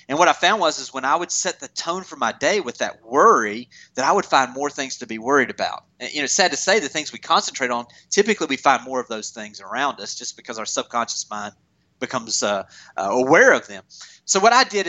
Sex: male